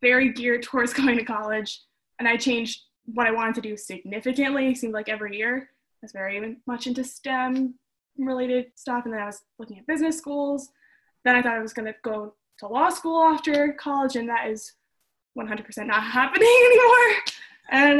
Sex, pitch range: female, 220-270 Hz